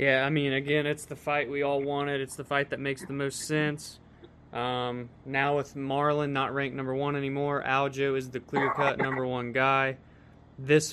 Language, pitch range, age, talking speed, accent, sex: English, 135-150 Hz, 20-39, 190 wpm, American, male